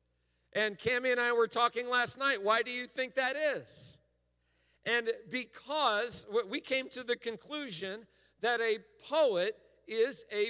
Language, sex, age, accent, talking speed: English, male, 50-69, American, 150 wpm